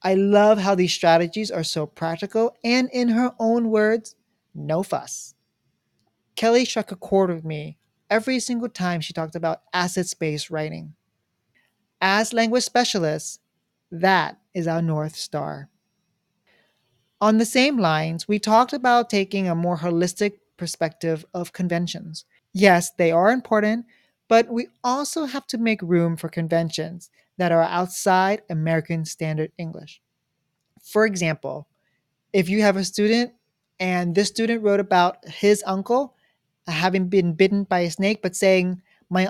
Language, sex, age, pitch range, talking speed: English, male, 40-59, 165-215 Hz, 145 wpm